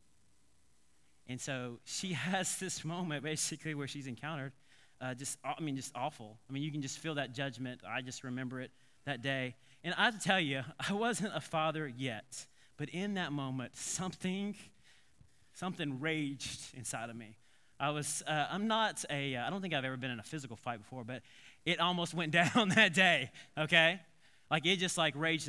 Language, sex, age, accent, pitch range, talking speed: English, male, 20-39, American, 125-170 Hz, 195 wpm